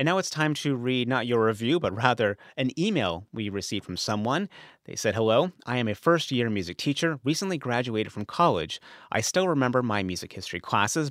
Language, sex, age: English, male, 30-49